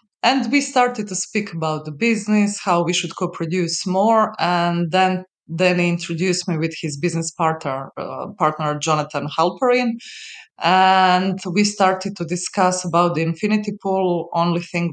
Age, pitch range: 20-39, 150-185 Hz